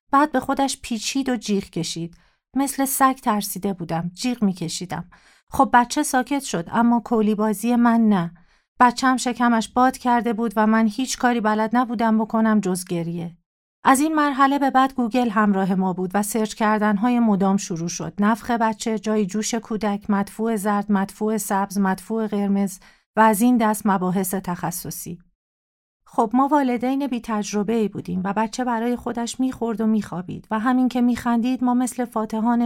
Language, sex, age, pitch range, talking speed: Persian, female, 40-59, 195-245 Hz, 165 wpm